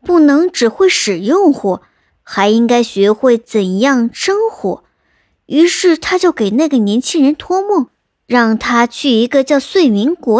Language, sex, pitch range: Chinese, male, 220-310 Hz